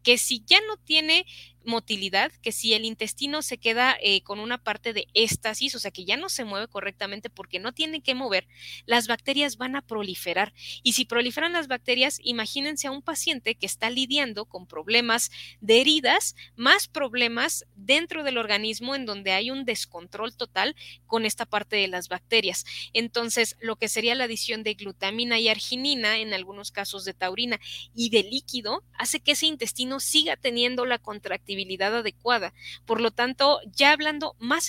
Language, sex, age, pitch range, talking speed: Spanish, female, 20-39, 210-270 Hz, 175 wpm